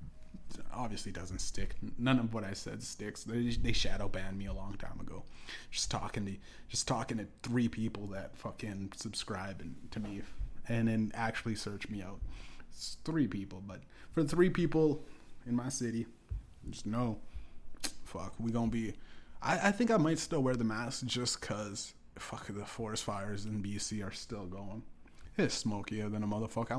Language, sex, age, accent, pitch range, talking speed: English, male, 20-39, American, 100-120 Hz, 175 wpm